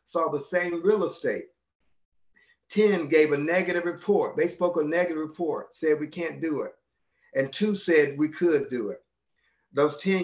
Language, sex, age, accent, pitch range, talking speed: English, male, 50-69, American, 145-190 Hz, 170 wpm